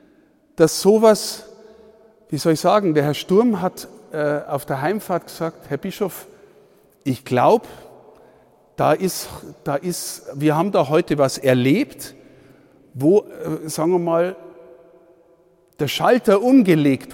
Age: 50-69